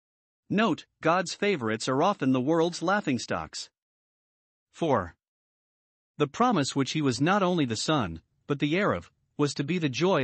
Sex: male